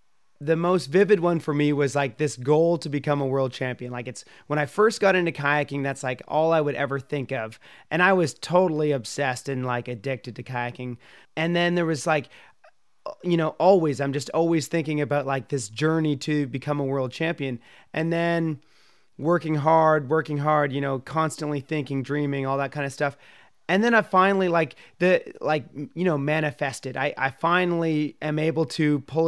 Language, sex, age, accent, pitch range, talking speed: English, male, 30-49, American, 145-170 Hz, 195 wpm